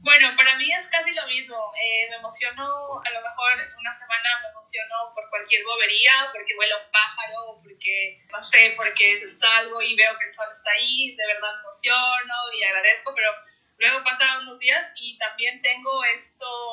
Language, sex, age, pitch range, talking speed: Spanish, female, 20-39, 215-265 Hz, 180 wpm